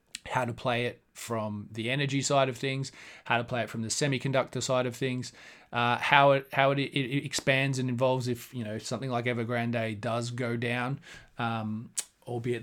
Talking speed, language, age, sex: 190 wpm, English, 30-49, male